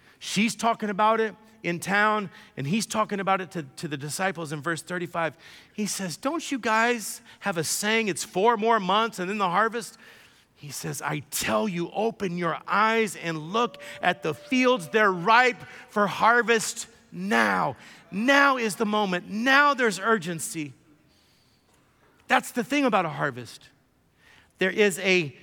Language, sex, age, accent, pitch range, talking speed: English, male, 40-59, American, 180-235 Hz, 160 wpm